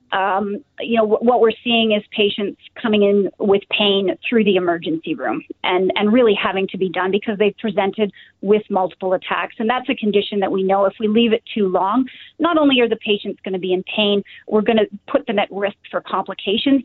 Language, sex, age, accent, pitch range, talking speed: English, female, 30-49, American, 195-225 Hz, 215 wpm